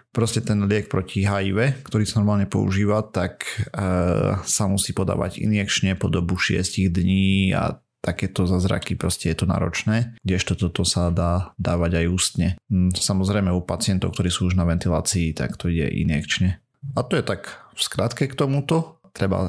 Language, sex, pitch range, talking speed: Slovak, male, 90-100 Hz, 165 wpm